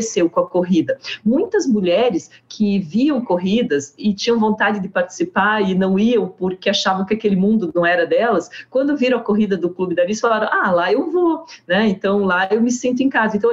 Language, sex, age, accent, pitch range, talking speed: Portuguese, female, 40-59, Brazilian, 190-250 Hz, 210 wpm